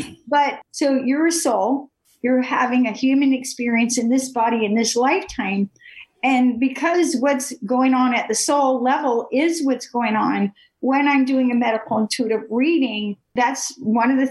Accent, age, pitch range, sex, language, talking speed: American, 50-69, 230-280 Hz, female, English, 170 wpm